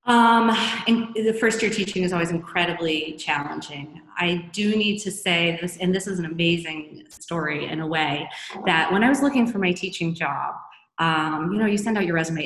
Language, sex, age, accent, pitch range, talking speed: English, female, 30-49, American, 160-185 Hz, 200 wpm